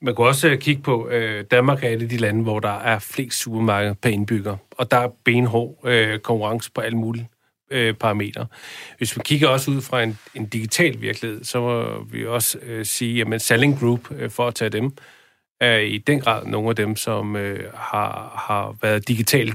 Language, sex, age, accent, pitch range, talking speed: Danish, male, 40-59, native, 110-125 Hz, 205 wpm